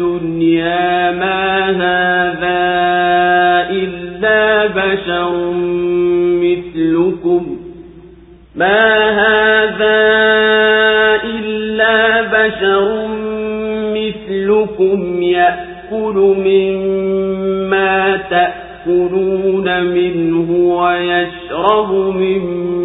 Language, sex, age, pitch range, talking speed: English, male, 50-69, 175-195 Hz, 45 wpm